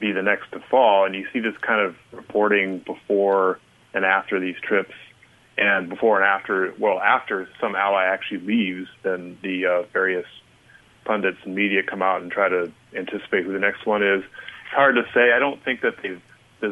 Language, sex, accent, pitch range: English, male, American, 95-105 Hz